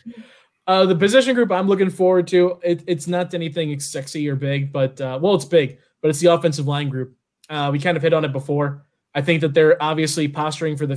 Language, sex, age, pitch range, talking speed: English, male, 20-39, 145-170 Hz, 230 wpm